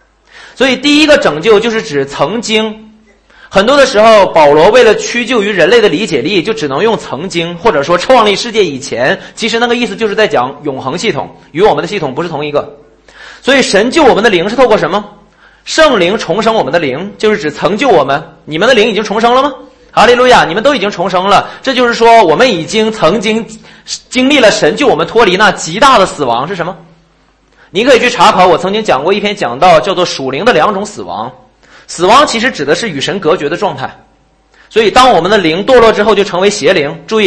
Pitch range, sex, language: 180-255 Hz, male, Chinese